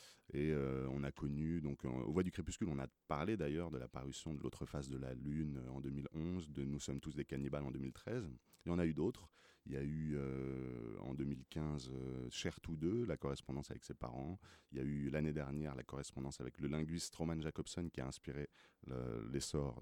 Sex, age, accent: male, 30-49, French